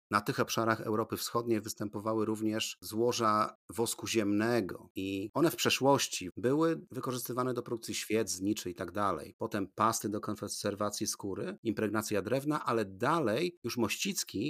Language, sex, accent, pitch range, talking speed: Polish, male, native, 95-120 Hz, 140 wpm